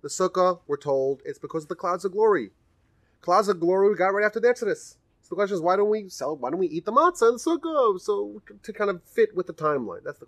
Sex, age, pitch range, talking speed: male, 30-49, 125-185 Hz, 270 wpm